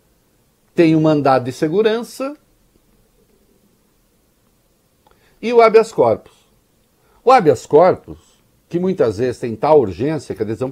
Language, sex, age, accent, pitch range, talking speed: English, male, 60-79, Brazilian, 115-145 Hz, 120 wpm